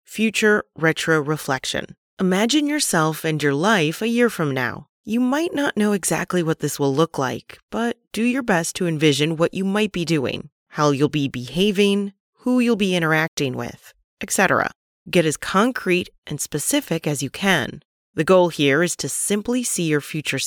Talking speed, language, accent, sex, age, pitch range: 175 wpm, English, American, female, 30-49, 150-215 Hz